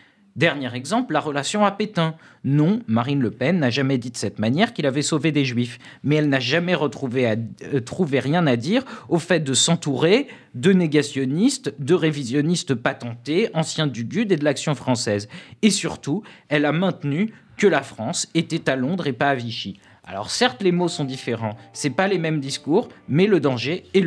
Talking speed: 195 wpm